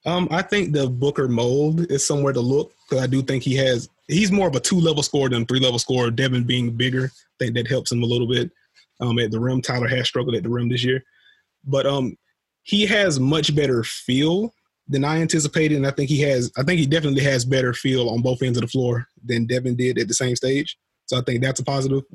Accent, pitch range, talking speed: American, 120-140 Hz, 245 wpm